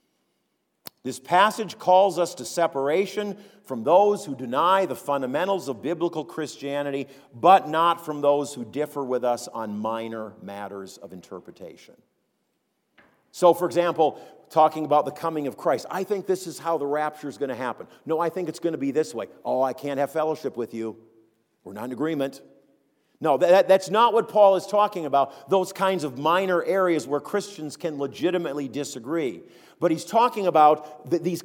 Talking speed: 175 wpm